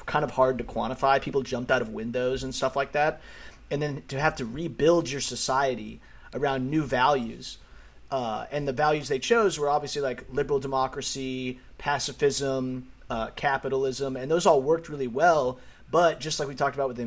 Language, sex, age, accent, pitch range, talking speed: English, male, 30-49, American, 125-145 Hz, 185 wpm